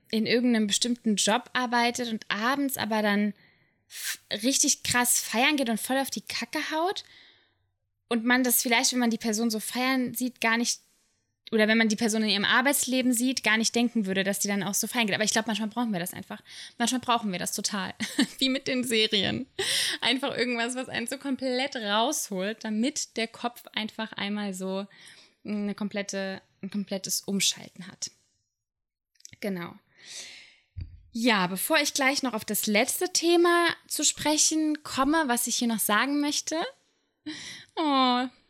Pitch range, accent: 205-260 Hz, German